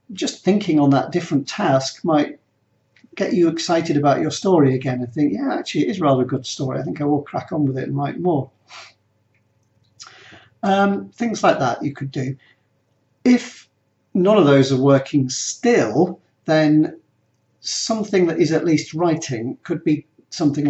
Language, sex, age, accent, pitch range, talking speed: English, male, 50-69, British, 130-155 Hz, 170 wpm